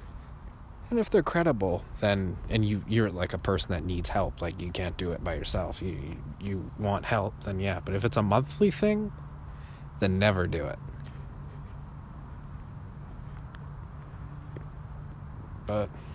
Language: English